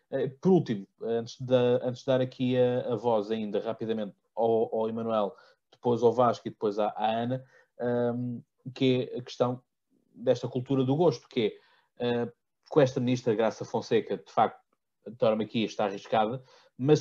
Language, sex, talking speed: Portuguese, male, 170 wpm